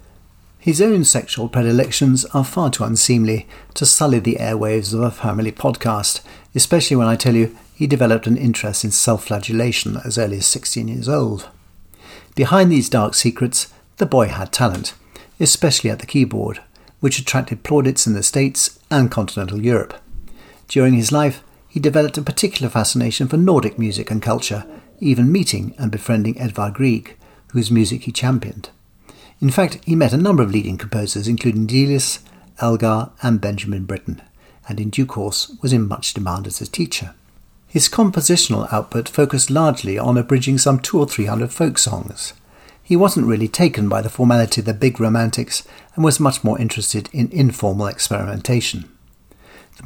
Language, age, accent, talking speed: English, 60-79, British, 165 wpm